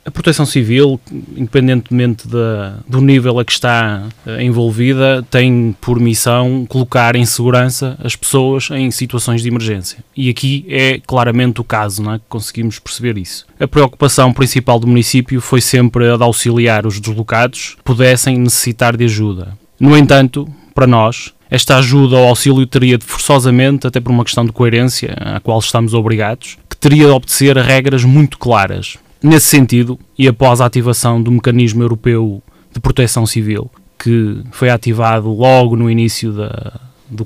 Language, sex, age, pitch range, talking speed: Portuguese, male, 20-39, 115-135 Hz, 160 wpm